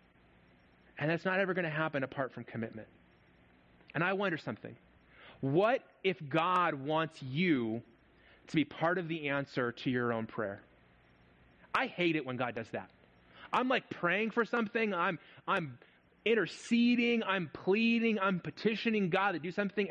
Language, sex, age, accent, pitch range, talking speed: English, male, 30-49, American, 115-185 Hz, 155 wpm